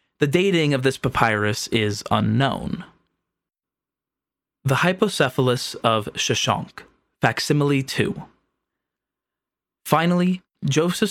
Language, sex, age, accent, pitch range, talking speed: English, male, 20-39, American, 120-175 Hz, 80 wpm